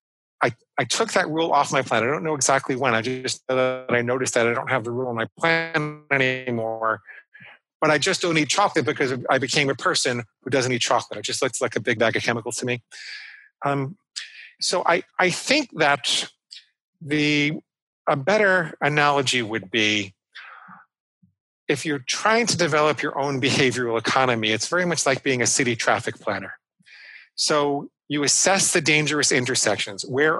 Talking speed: 180 wpm